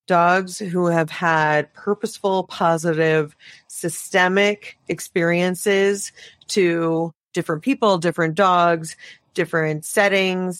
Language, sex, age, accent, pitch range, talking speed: English, female, 40-59, American, 165-210 Hz, 85 wpm